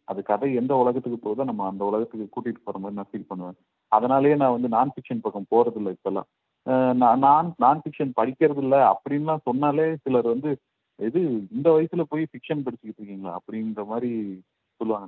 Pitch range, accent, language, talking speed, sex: 110-135 Hz, native, Tamil, 165 wpm, male